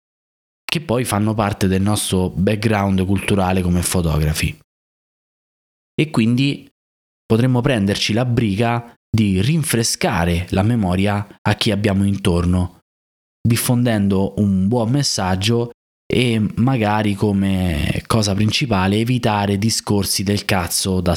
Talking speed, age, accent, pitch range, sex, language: 105 wpm, 20-39, native, 95-115 Hz, male, Italian